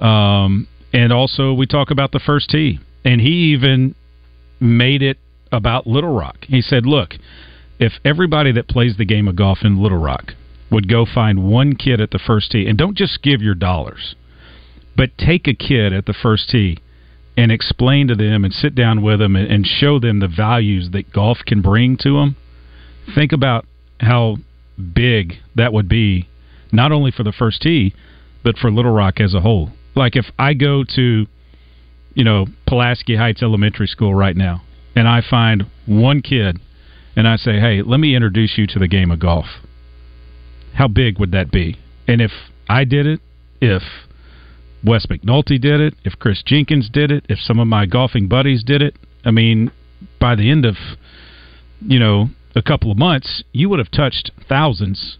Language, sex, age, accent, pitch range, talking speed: English, male, 40-59, American, 85-130 Hz, 185 wpm